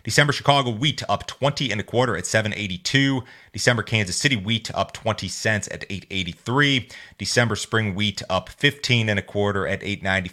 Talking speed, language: 200 wpm, English